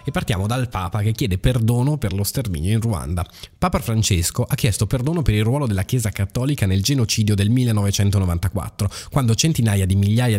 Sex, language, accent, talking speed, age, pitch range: male, Italian, native, 180 wpm, 20-39, 95-120 Hz